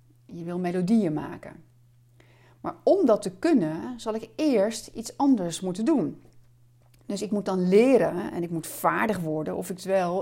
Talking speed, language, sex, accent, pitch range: 170 wpm, Dutch, female, Dutch, 150-225 Hz